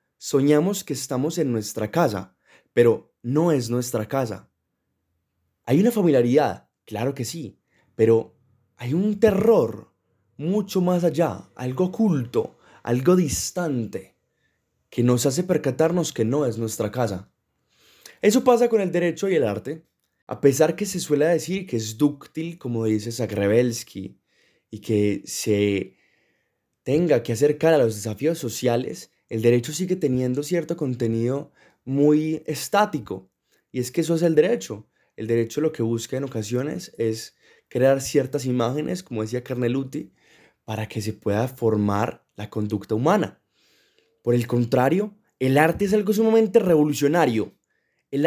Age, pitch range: 20-39, 115-165 Hz